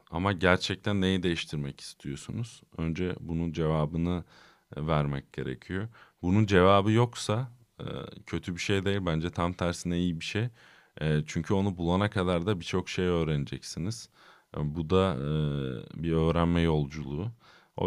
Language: Turkish